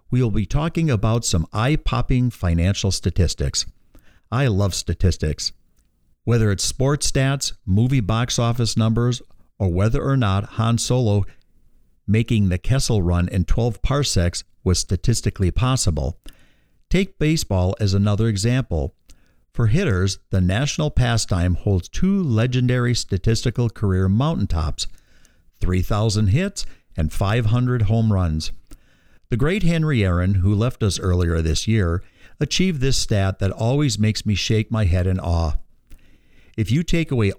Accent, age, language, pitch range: American, 50-69, English, 90-120 Hz